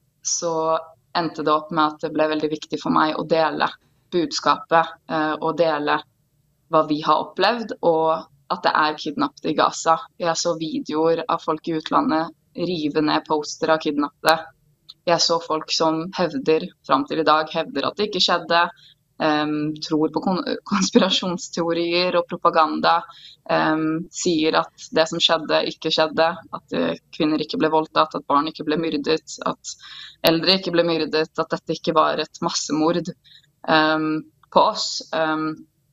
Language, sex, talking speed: English, female, 150 wpm